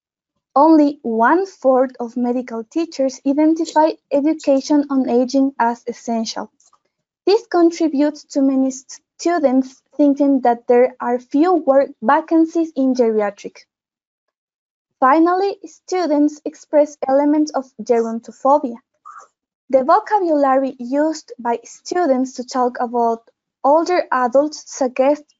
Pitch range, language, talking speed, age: 250-310 Hz, English, 100 wpm, 20-39